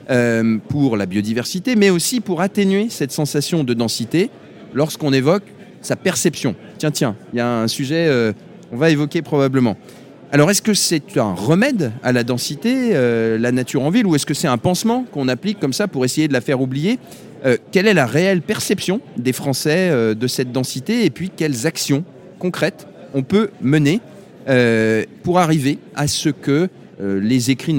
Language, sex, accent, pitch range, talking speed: French, male, French, 125-180 Hz, 190 wpm